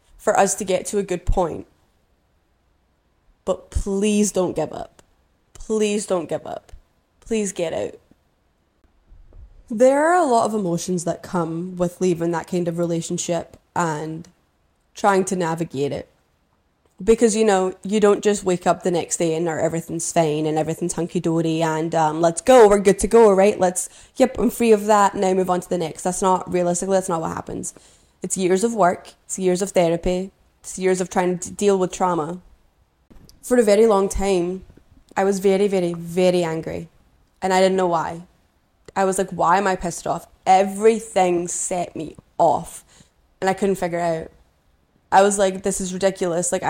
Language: English